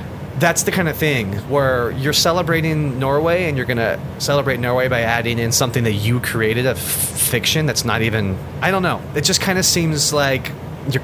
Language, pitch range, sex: English, 110-150 Hz, male